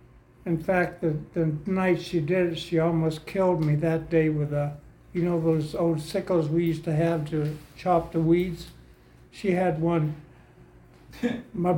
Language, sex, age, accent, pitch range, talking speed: English, male, 60-79, American, 155-180 Hz, 170 wpm